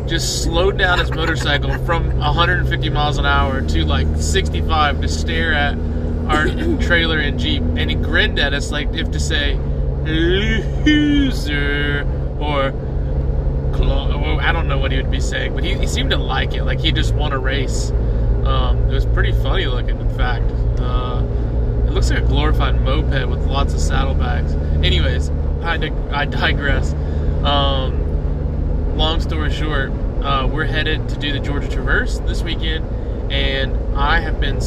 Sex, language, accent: male, English, American